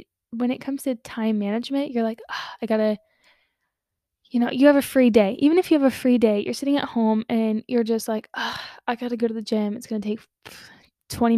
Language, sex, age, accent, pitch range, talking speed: English, female, 10-29, American, 215-250 Hz, 220 wpm